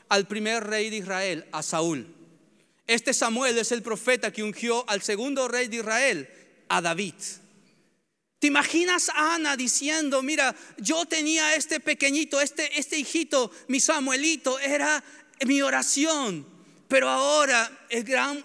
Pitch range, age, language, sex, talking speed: 195-265 Hz, 40-59, Spanish, male, 135 wpm